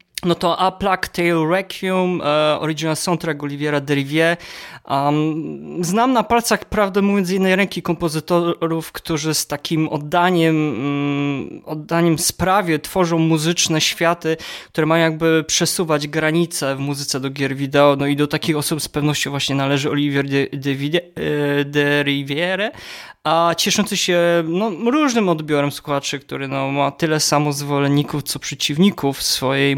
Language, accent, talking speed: Polish, native, 145 wpm